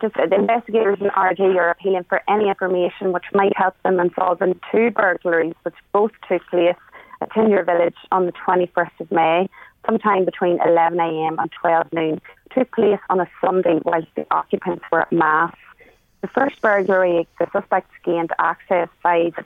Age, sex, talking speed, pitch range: 30-49, female, 170 wpm, 165-190 Hz